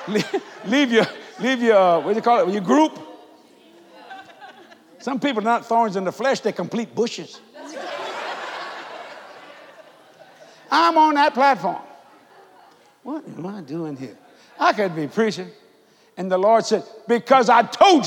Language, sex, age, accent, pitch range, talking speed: English, male, 60-79, American, 140-230 Hz, 140 wpm